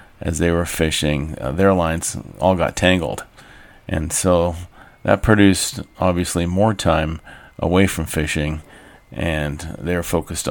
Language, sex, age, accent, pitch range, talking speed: English, male, 40-59, American, 80-95 Hz, 130 wpm